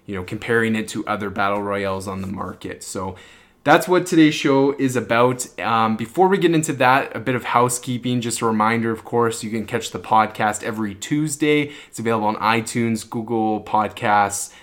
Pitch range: 110-125 Hz